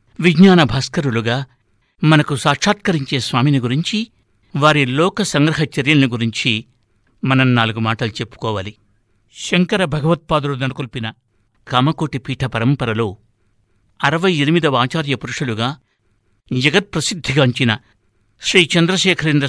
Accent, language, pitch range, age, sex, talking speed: native, Telugu, 115-155 Hz, 60-79, male, 75 wpm